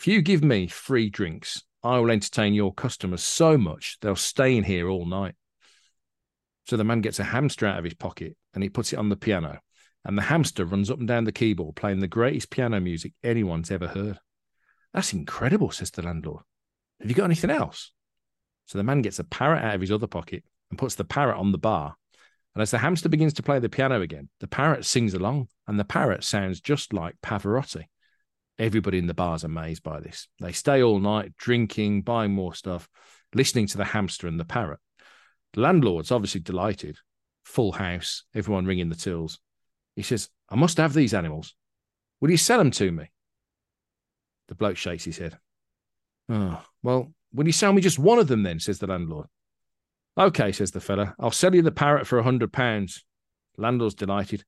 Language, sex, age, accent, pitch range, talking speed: English, male, 40-59, British, 95-125 Hz, 195 wpm